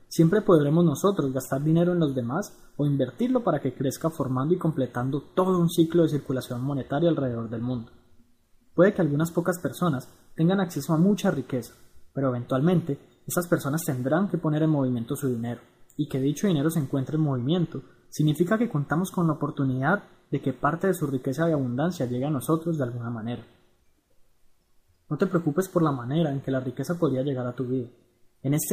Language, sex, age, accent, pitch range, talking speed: Spanish, male, 20-39, Colombian, 130-170 Hz, 190 wpm